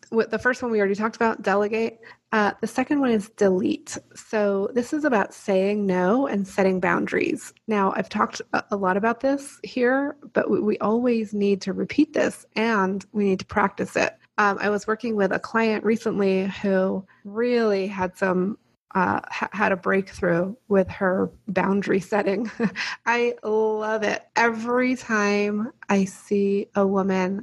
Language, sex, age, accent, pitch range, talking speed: English, female, 30-49, American, 195-230 Hz, 160 wpm